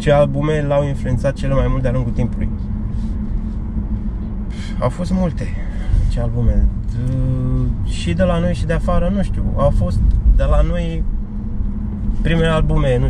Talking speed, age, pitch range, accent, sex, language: 150 wpm, 20-39, 95-110 Hz, native, male, Romanian